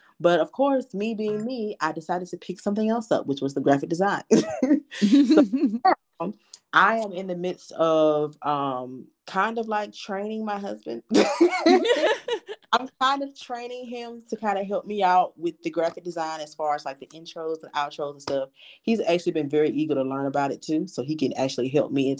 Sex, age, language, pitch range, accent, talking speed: female, 20-39, English, 145-195 Hz, American, 200 wpm